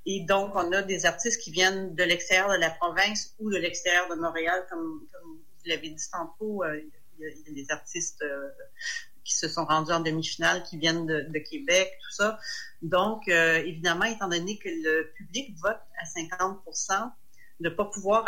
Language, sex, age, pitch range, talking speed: French, female, 40-59, 165-200 Hz, 195 wpm